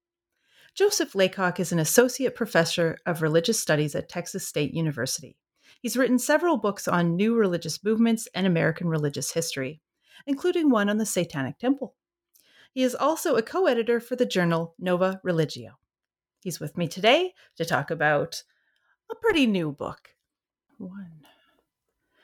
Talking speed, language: 145 wpm, English